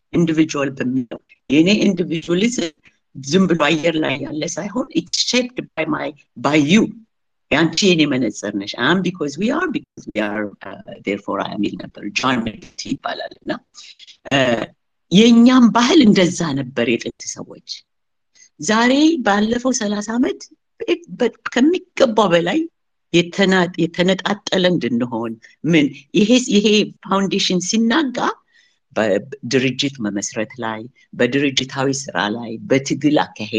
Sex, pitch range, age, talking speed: female, 130-215 Hz, 60-79, 65 wpm